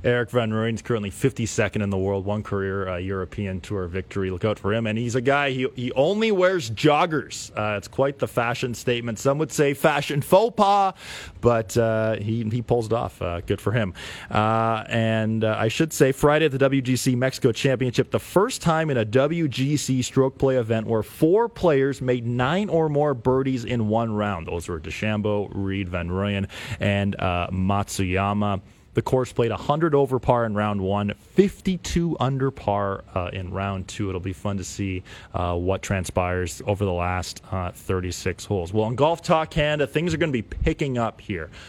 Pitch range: 100-135 Hz